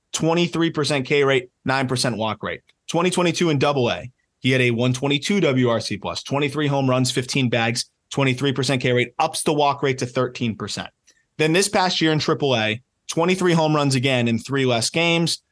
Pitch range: 125-160 Hz